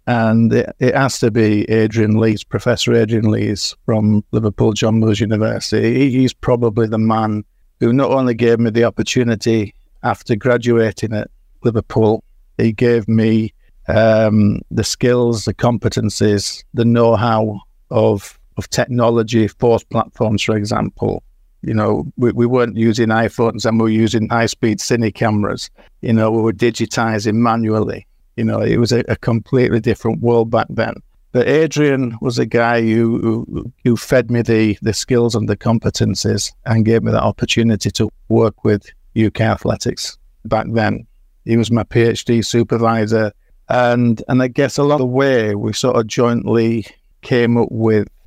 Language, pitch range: English, 110-120 Hz